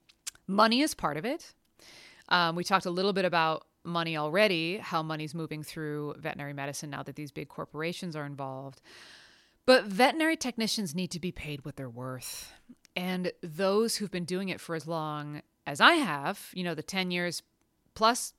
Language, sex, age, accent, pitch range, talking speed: English, female, 30-49, American, 170-240 Hz, 180 wpm